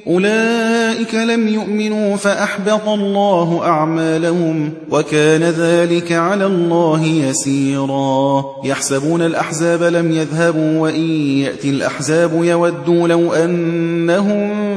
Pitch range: 160-200 Hz